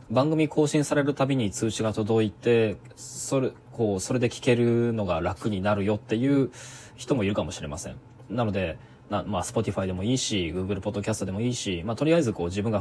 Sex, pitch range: male, 100-130 Hz